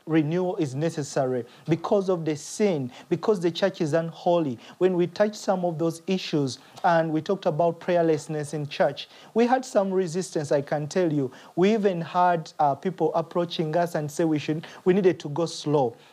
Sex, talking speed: male, 185 wpm